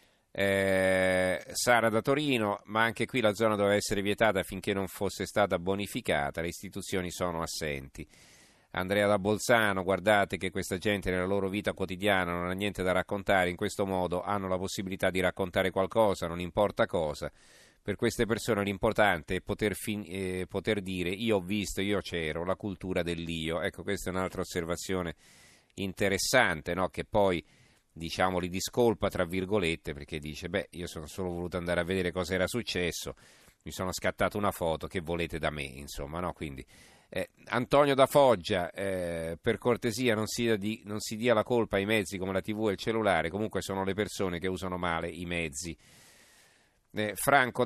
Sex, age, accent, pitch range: male, 40-59, native, 90-105 Hz